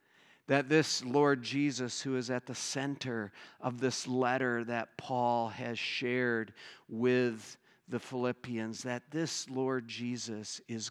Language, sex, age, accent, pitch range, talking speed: English, male, 40-59, American, 120-140 Hz, 130 wpm